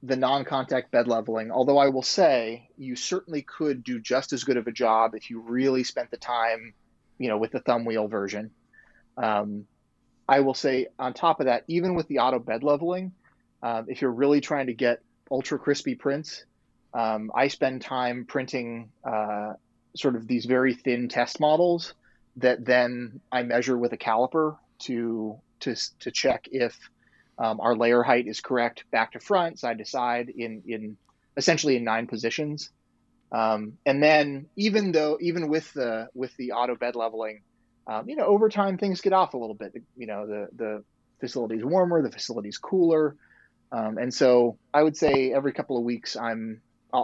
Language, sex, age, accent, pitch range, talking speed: English, male, 30-49, American, 115-140 Hz, 185 wpm